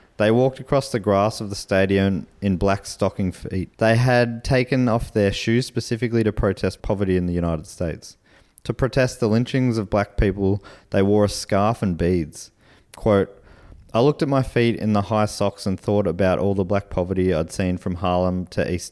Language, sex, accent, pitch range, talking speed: English, male, Australian, 90-110 Hz, 195 wpm